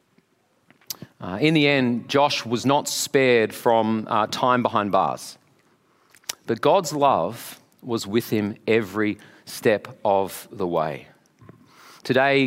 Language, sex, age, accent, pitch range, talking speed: English, male, 40-59, Australian, 110-140 Hz, 120 wpm